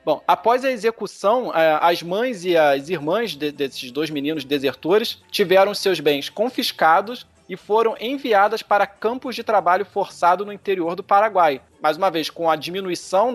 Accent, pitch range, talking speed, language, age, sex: Brazilian, 155-215 Hz, 155 wpm, Portuguese, 20-39, male